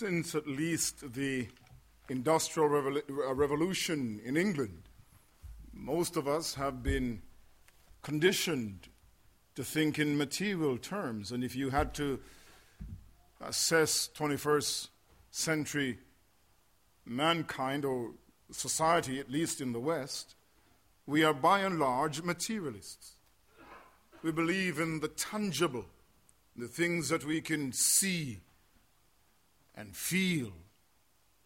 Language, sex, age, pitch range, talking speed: English, male, 50-69, 100-165 Hz, 105 wpm